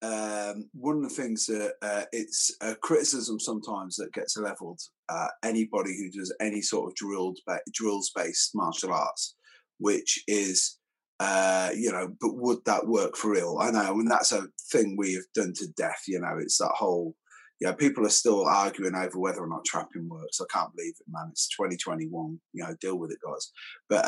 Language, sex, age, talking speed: English, male, 30-49, 200 wpm